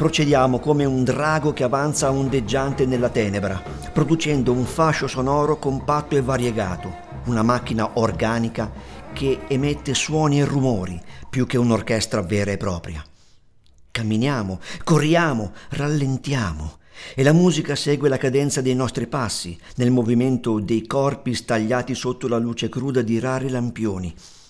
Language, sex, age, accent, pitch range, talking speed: Italian, male, 50-69, native, 110-145 Hz, 130 wpm